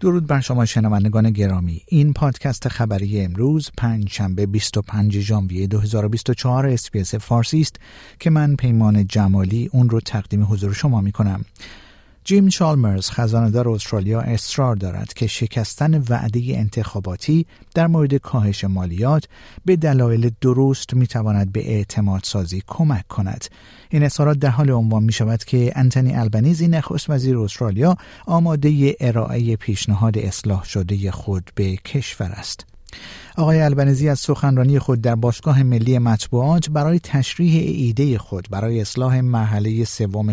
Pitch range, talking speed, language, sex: 105-140 Hz, 135 wpm, Persian, male